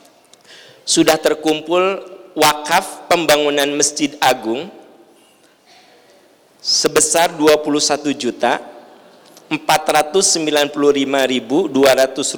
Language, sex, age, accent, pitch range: Indonesian, male, 50-69, native, 145-195 Hz